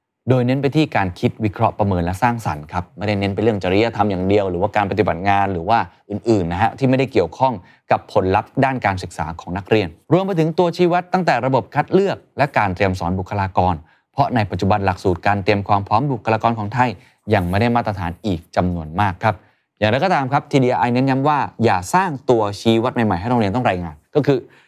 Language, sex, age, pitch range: Thai, male, 20-39, 95-130 Hz